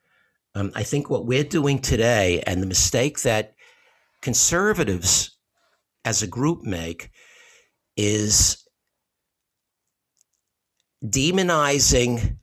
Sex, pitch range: male, 105-130 Hz